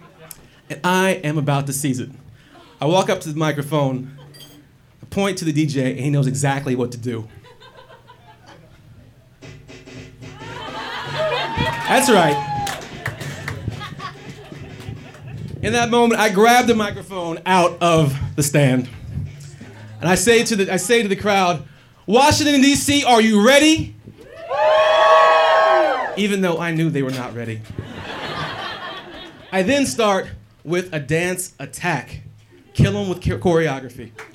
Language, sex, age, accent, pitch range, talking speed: English, male, 30-49, American, 130-185 Hz, 120 wpm